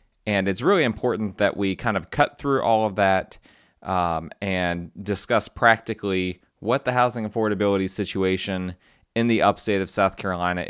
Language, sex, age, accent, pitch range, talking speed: English, male, 30-49, American, 95-115 Hz, 155 wpm